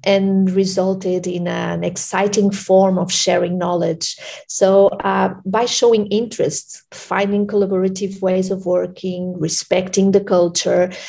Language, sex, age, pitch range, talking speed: English, female, 40-59, 180-205 Hz, 120 wpm